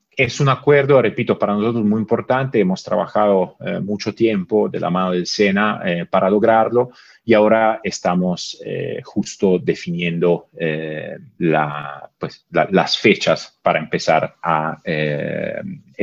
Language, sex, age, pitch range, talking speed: Spanish, male, 40-59, 90-120 Hz, 140 wpm